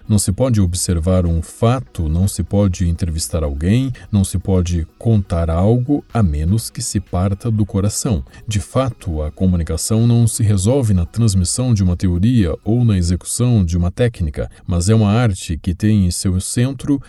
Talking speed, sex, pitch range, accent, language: 175 wpm, male, 90-110 Hz, Brazilian, Portuguese